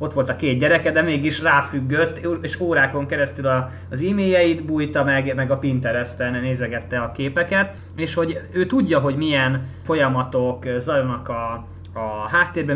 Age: 30-49